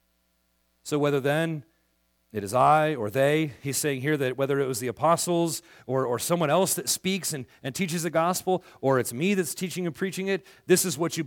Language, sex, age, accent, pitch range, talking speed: English, male, 40-59, American, 125-190 Hz, 215 wpm